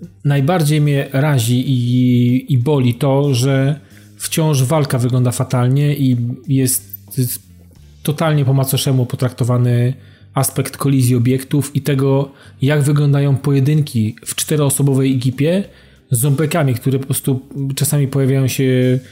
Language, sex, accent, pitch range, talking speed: Polish, male, native, 125-150 Hz, 120 wpm